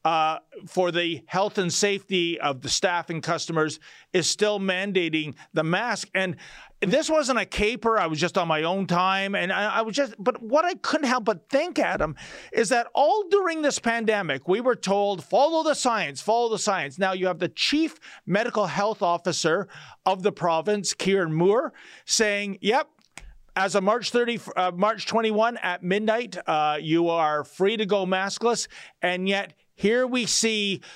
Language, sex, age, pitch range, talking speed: English, male, 40-59, 170-225 Hz, 180 wpm